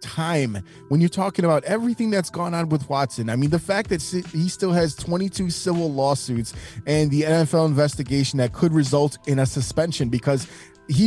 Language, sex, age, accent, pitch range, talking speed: English, male, 20-39, American, 130-160 Hz, 185 wpm